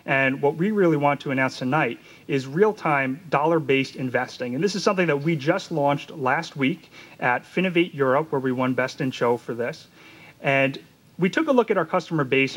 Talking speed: 200 wpm